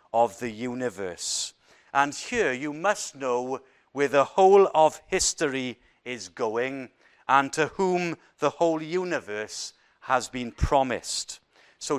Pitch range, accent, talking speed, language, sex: 125-155 Hz, British, 125 wpm, English, male